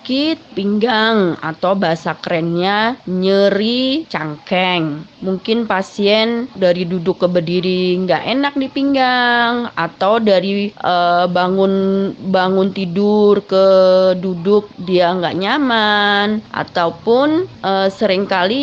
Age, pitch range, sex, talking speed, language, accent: 20-39, 190-255 Hz, female, 100 wpm, Indonesian, native